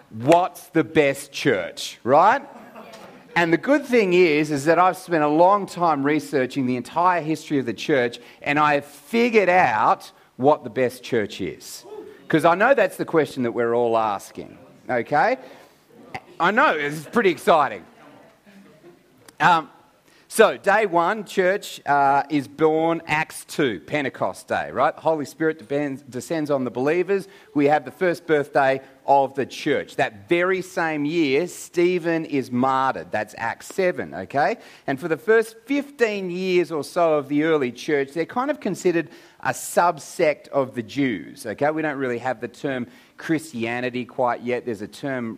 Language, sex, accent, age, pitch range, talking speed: English, male, Australian, 40-59, 135-180 Hz, 165 wpm